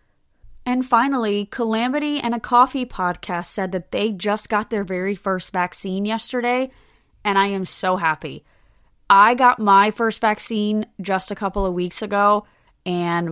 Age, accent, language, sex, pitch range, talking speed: 20-39, American, English, female, 180-225 Hz, 155 wpm